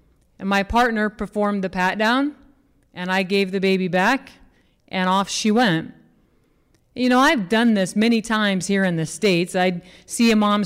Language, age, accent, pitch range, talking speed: English, 30-49, American, 185-220 Hz, 180 wpm